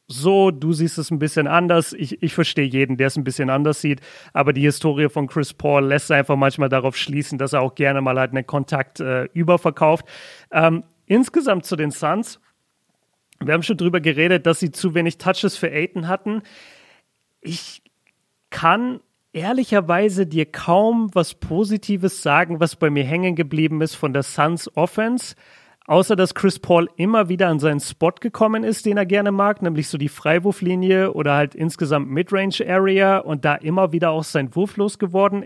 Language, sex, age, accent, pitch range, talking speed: German, male, 40-59, German, 150-190 Hz, 180 wpm